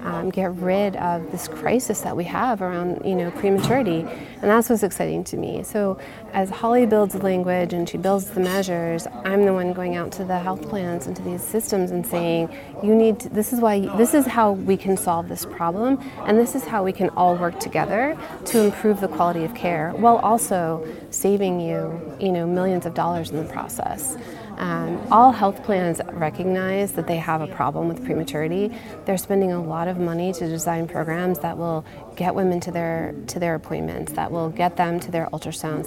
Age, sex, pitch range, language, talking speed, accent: 30-49, female, 165-195 Hz, English, 205 wpm, American